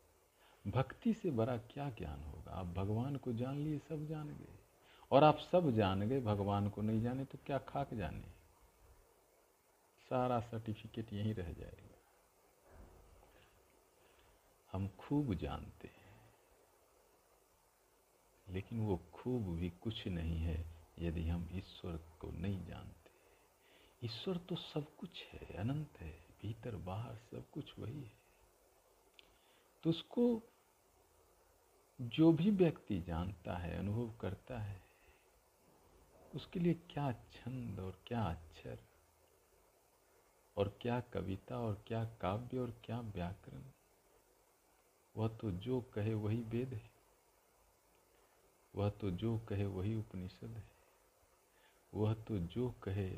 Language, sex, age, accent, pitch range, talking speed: Hindi, male, 50-69, native, 95-130 Hz, 120 wpm